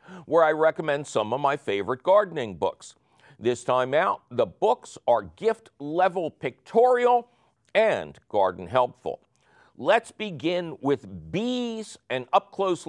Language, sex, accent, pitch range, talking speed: English, male, American, 135-200 Hz, 125 wpm